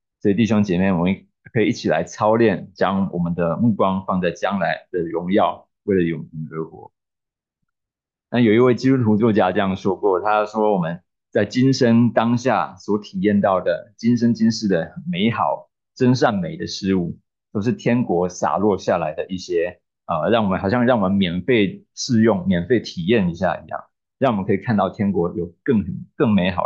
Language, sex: English, male